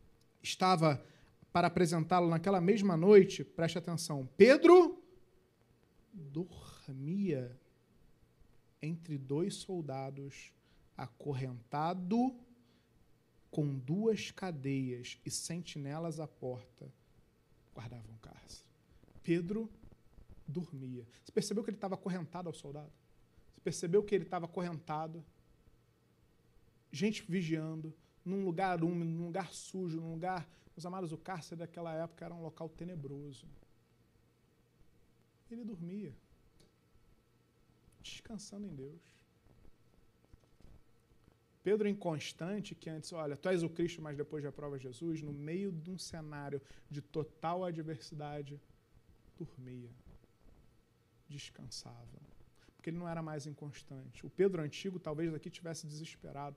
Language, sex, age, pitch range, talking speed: Portuguese, male, 40-59, 145-180 Hz, 110 wpm